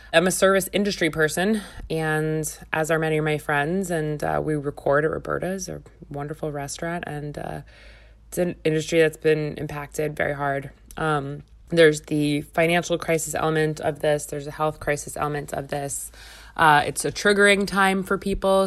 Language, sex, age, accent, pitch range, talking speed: English, female, 20-39, American, 145-175 Hz, 170 wpm